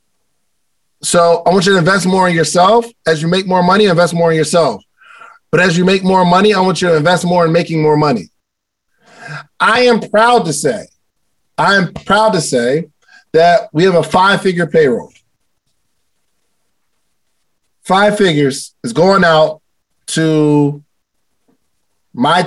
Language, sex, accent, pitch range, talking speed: English, male, American, 160-215 Hz, 150 wpm